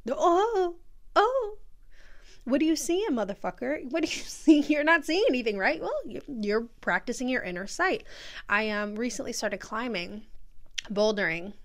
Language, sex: English, female